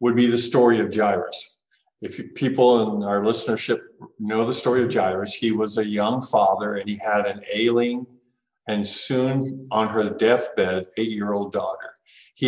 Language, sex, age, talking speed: English, male, 50-69, 175 wpm